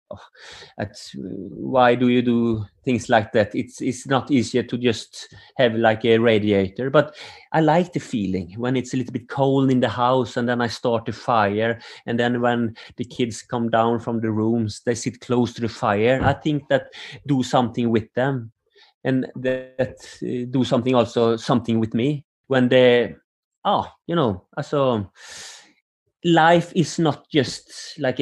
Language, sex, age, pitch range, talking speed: English, male, 30-49, 120-150 Hz, 180 wpm